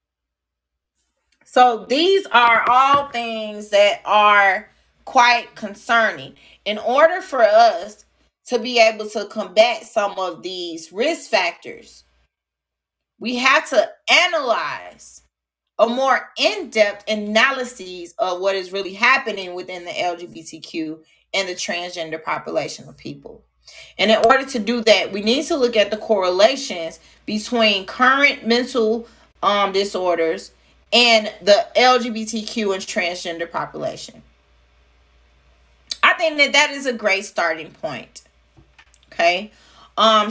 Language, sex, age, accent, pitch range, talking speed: English, female, 30-49, American, 165-240 Hz, 120 wpm